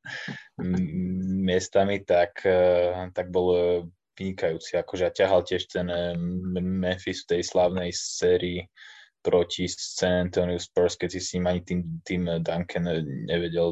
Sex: male